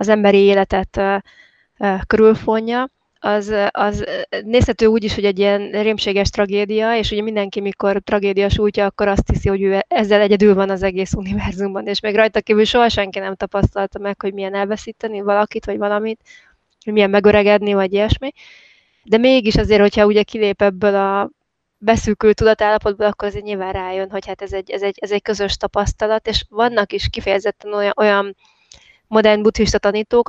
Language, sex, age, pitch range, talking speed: Hungarian, female, 20-39, 200-220 Hz, 170 wpm